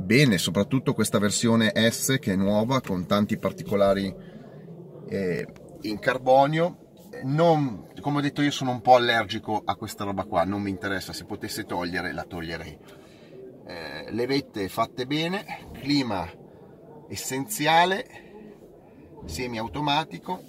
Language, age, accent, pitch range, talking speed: Italian, 30-49, native, 100-140 Hz, 125 wpm